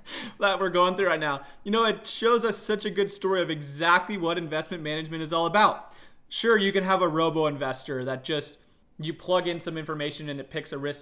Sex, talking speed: male, 230 wpm